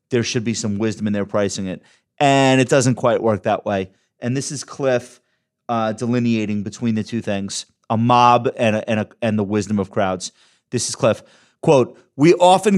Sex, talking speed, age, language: male, 200 wpm, 30-49, English